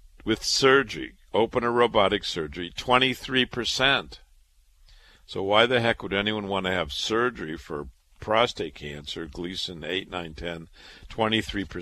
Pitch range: 80-105 Hz